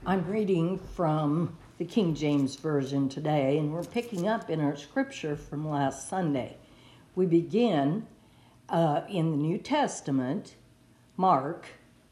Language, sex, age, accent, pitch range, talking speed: English, female, 60-79, American, 140-185 Hz, 130 wpm